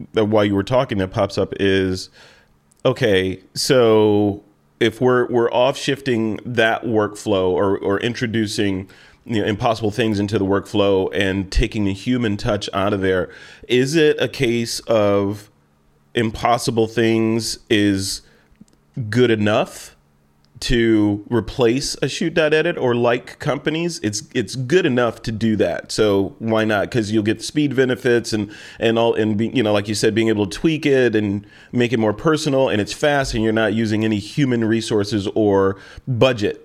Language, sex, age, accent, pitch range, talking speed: English, male, 30-49, American, 105-125 Hz, 165 wpm